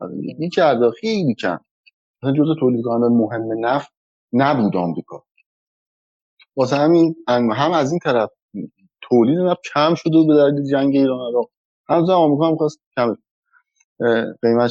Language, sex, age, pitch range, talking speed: Persian, male, 30-49, 120-180 Hz, 120 wpm